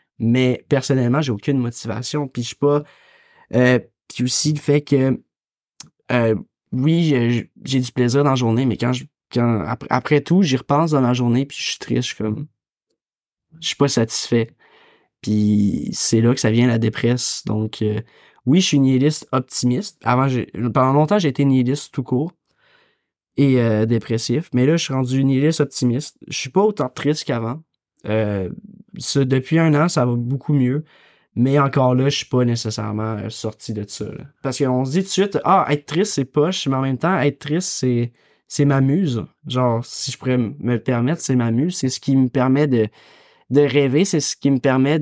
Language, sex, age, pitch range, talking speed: French, male, 20-39, 120-150 Hz, 205 wpm